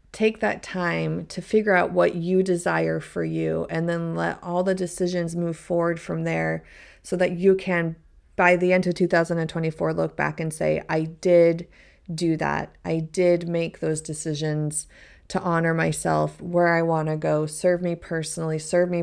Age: 30-49